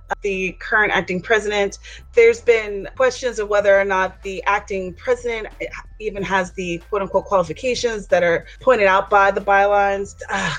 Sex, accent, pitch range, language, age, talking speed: female, American, 185-250 Hz, English, 30-49, 155 wpm